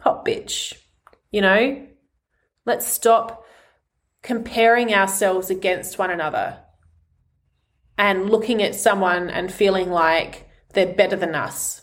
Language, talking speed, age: English, 110 wpm, 30-49